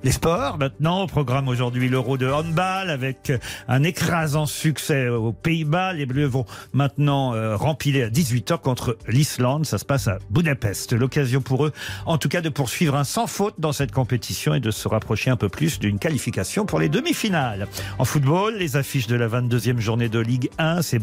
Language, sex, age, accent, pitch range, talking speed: French, male, 50-69, French, 120-165 Hz, 195 wpm